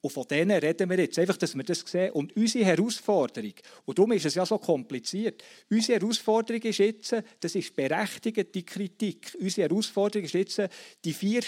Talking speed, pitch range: 185 wpm, 145-200 Hz